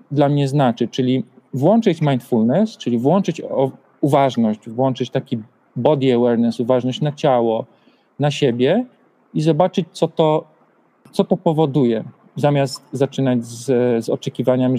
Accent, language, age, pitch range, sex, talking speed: native, Polish, 40-59, 120-145 Hz, male, 125 wpm